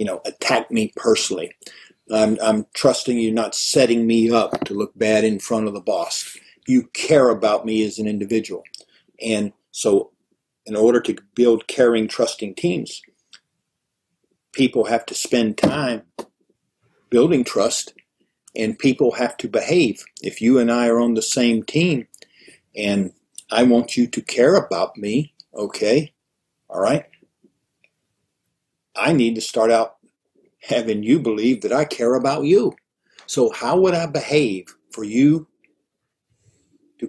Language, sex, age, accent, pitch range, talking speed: English, male, 50-69, American, 110-135 Hz, 145 wpm